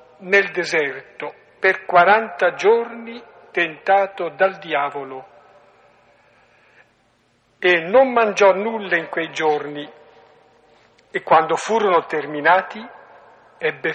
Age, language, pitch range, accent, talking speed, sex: 50-69, Italian, 150-195 Hz, native, 85 wpm, male